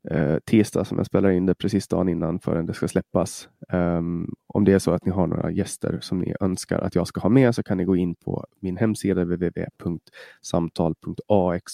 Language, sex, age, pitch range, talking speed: Swedish, male, 30-49, 90-105 Hz, 205 wpm